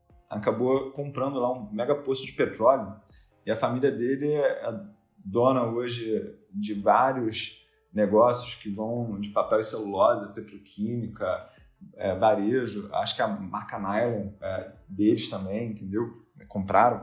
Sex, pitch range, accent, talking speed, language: male, 115-145 Hz, Brazilian, 135 wpm, Portuguese